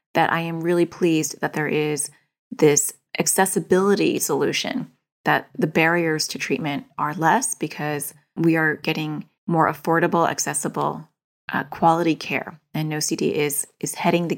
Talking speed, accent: 140 wpm, American